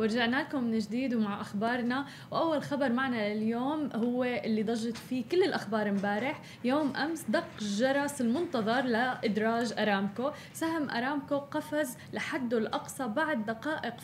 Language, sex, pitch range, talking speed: Arabic, female, 215-265 Hz, 135 wpm